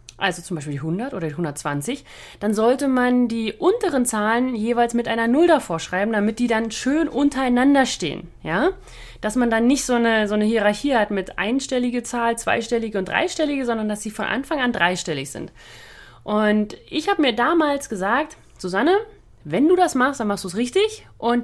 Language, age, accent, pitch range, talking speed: German, 30-49, German, 210-285 Hz, 190 wpm